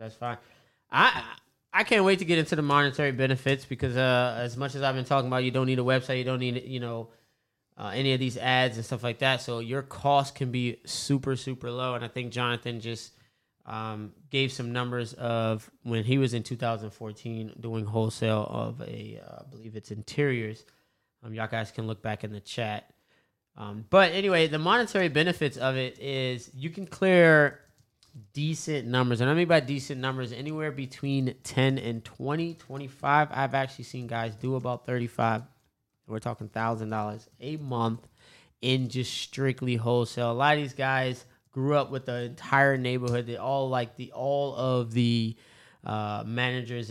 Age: 20-39